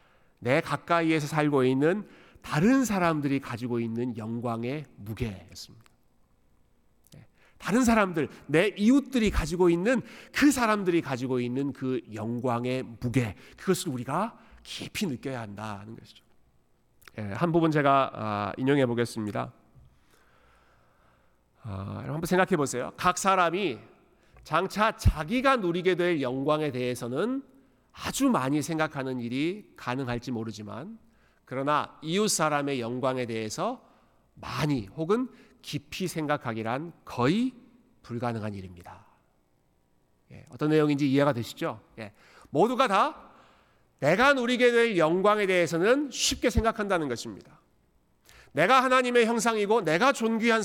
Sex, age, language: male, 40-59, Korean